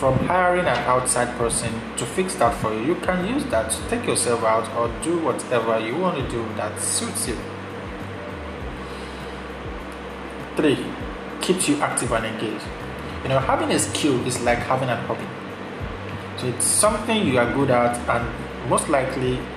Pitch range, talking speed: 95-135 Hz, 165 wpm